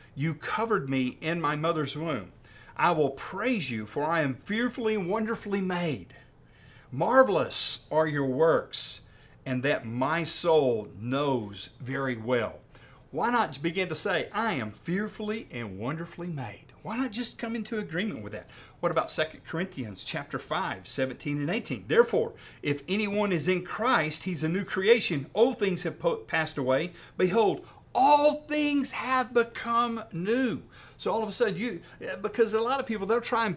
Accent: American